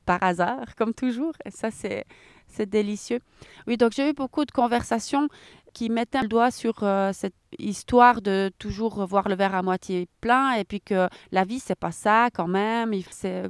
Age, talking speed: 30-49, 190 wpm